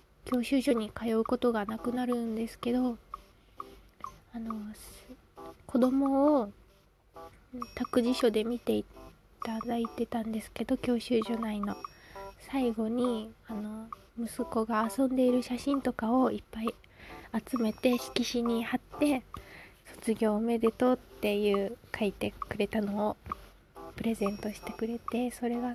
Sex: female